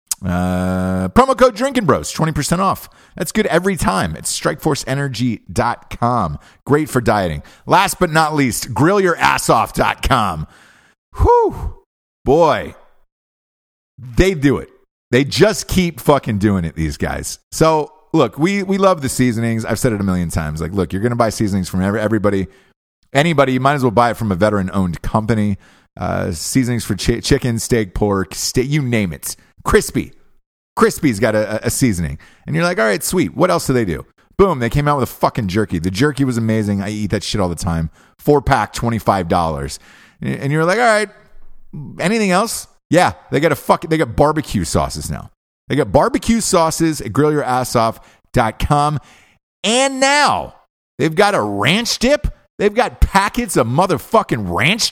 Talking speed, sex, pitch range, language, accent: 170 wpm, male, 105-170 Hz, English, American